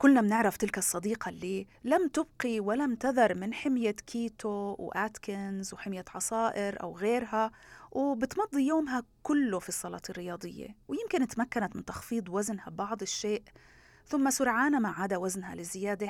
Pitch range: 190-270 Hz